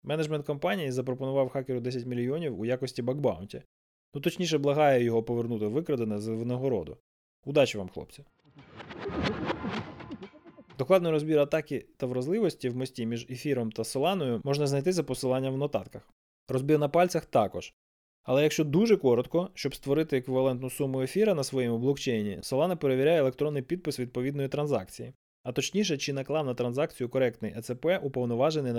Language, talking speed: Ukrainian, 140 wpm